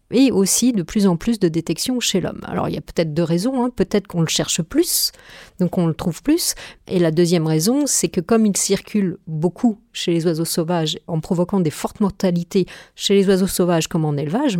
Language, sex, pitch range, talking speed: French, female, 170-220 Hz, 220 wpm